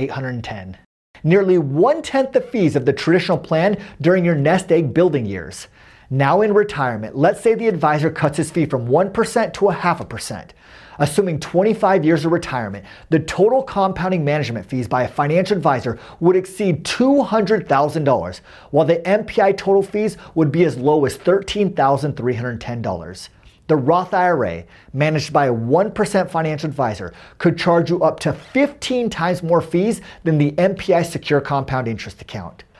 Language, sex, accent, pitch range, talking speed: English, male, American, 130-185 Hz, 155 wpm